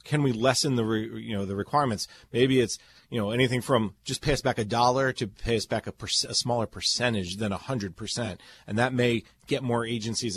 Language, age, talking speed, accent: English, 30-49, 225 wpm, American